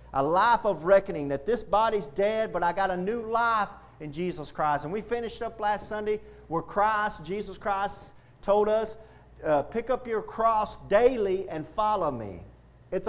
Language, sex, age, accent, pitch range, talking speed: English, male, 40-59, American, 165-230 Hz, 180 wpm